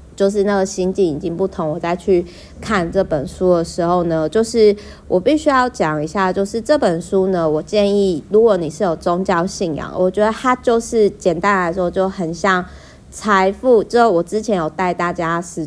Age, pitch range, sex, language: 30-49, 160-200 Hz, female, Chinese